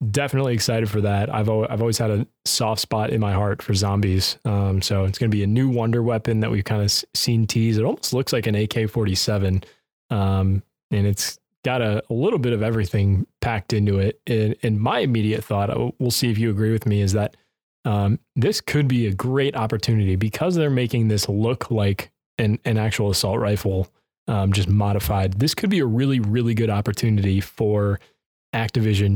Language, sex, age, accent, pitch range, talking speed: English, male, 20-39, American, 100-120 Hz, 210 wpm